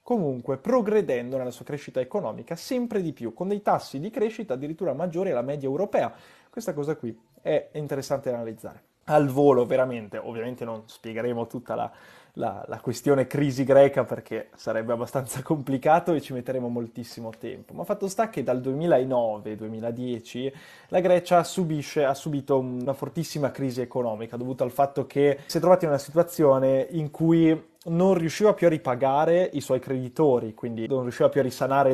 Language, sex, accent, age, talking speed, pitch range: Italian, male, native, 20-39, 165 wpm, 125-165 Hz